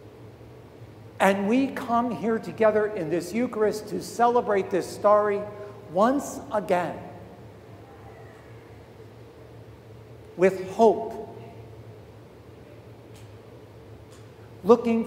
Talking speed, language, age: 70 wpm, English, 60-79